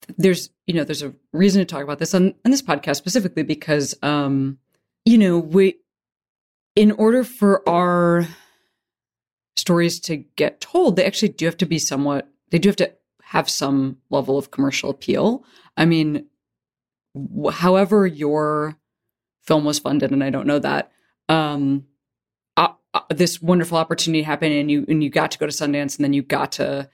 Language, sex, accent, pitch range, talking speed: English, female, American, 140-175 Hz, 175 wpm